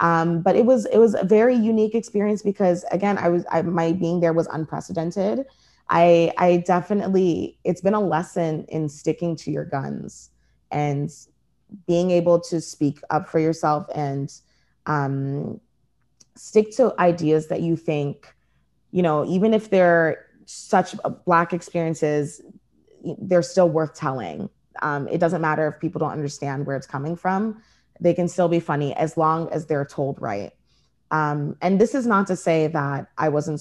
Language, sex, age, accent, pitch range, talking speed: English, female, 20-39, American, 145-180 Hz, 170 wpm